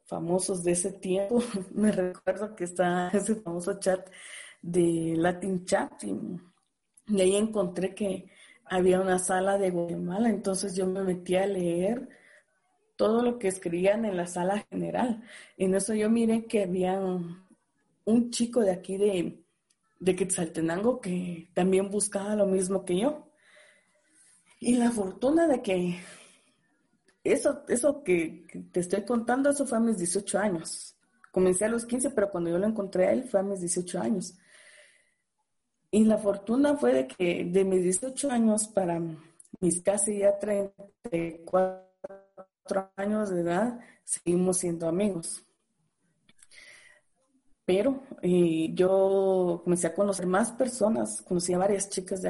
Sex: female